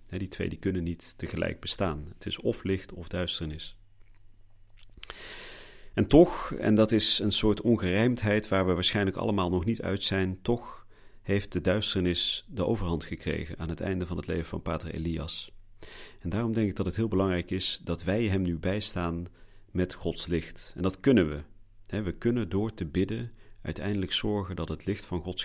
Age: 40-59